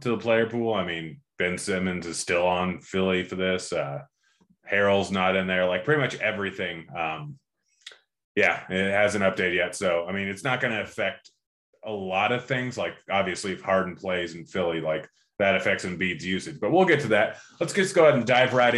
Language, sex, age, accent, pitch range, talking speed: English, male, 20-39, American, 95-115 Hz, 210 wpm